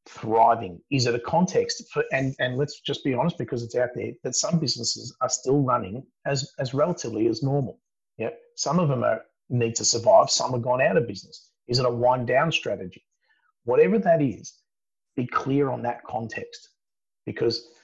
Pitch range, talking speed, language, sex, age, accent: 125-175 Hz, 190 wpm, English, male, 30-49, Australian